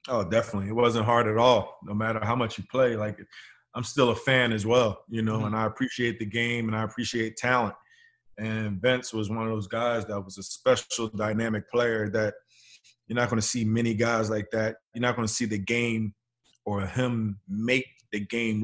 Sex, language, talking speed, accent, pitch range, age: male, English, 215 wpm, American, 110-120 Hz, 20-39